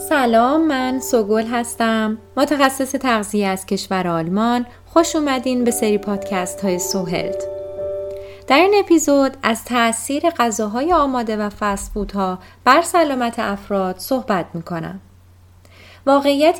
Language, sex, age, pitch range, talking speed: Persian, female, 20-39, 190-260 Hz, 115 wpm